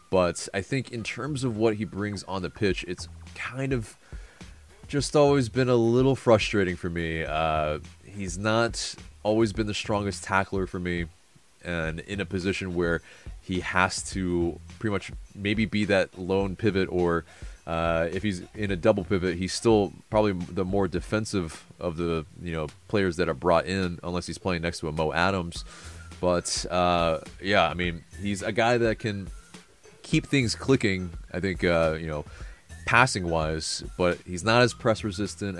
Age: 20-39